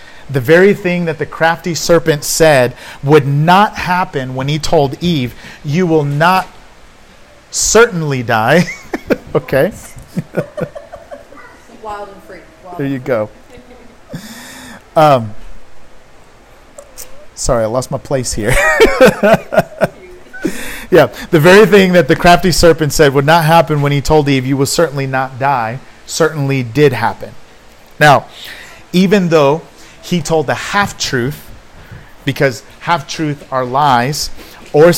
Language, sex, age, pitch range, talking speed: English, male, 40-59, 135-175 Hz, 120 wpm